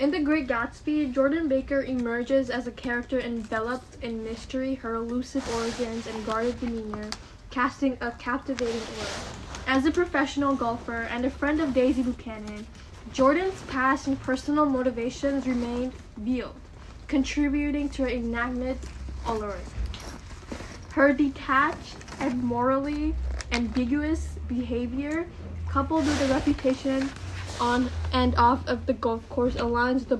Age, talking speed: 10-29, 125 wpm